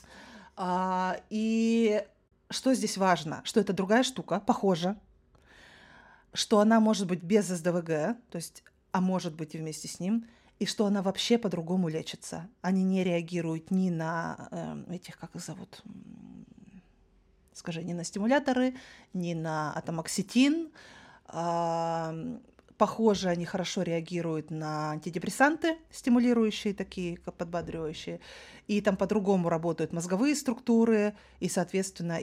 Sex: female